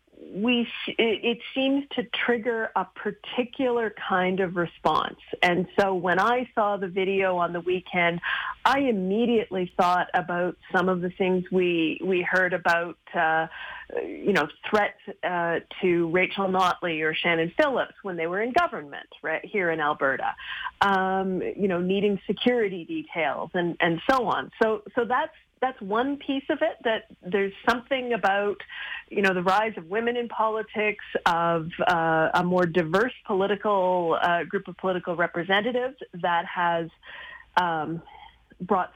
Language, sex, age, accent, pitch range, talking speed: English, female, 40-59, American, 180-245 Hz, 155 wpm